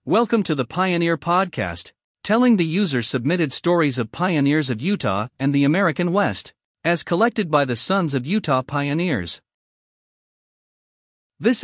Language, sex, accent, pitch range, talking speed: English, male, American, 130-185 Hz, 135 wpm